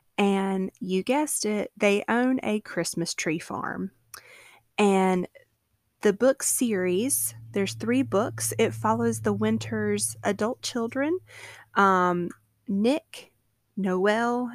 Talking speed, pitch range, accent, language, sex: 105 wpm, 185-220 Hz, American, English, female